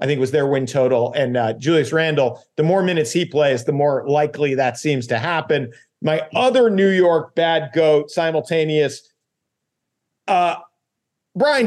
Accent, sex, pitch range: American, male, 150-210 Hz